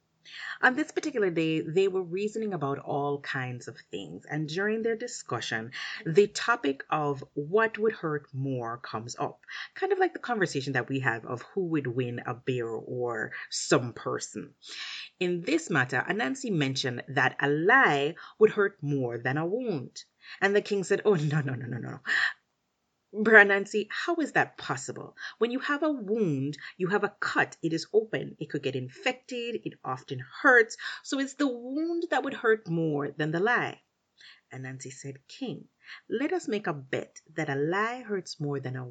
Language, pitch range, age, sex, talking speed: English, 135-215 Hz, 30-49, female, 180 wpm